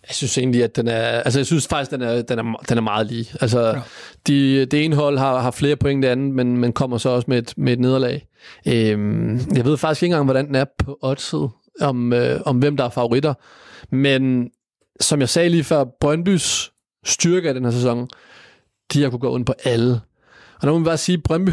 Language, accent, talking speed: Danish, native, 230 wpm